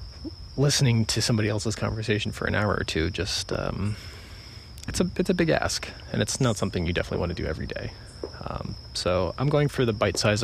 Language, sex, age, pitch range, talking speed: English, male, 30-49, 95-110 Hz, 205 wpm